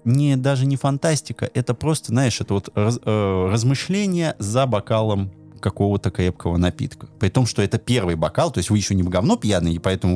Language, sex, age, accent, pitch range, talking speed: Russian, male, 20-39, native, 95-125 Hz, 195 wpm